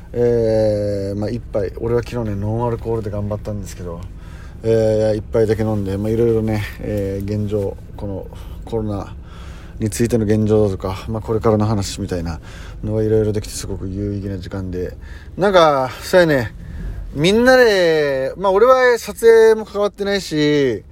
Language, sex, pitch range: Japanese, male, 100-140 Hz